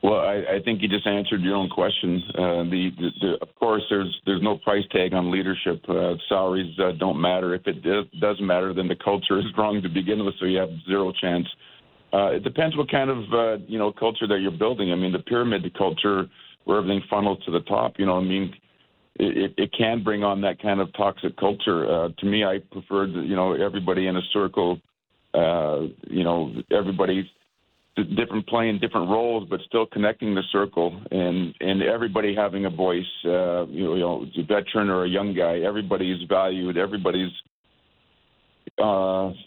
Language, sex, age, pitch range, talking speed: English, male, 50-69, 90-105 Hz, 200 wpm